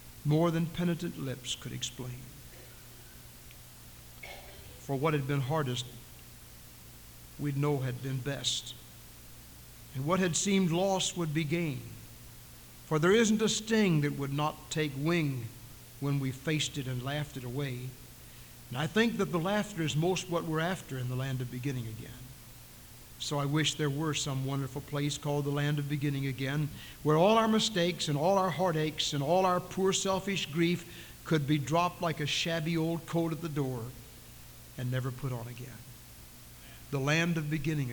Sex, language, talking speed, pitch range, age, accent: male, English, 170 wpm, 125-165 Hz, 60-79, American